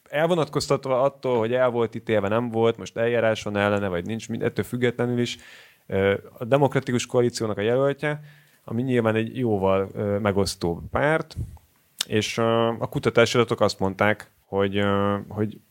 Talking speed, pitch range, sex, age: 140 wpm, 95-120 Hz, male, 30-49